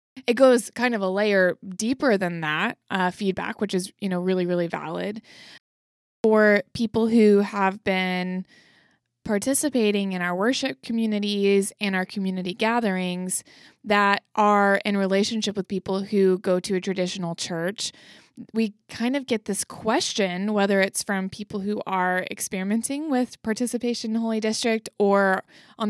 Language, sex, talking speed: English, female, 150 wpm